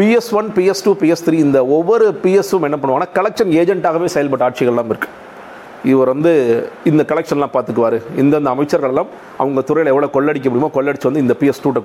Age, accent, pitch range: 40-59, native, 130-165 Hz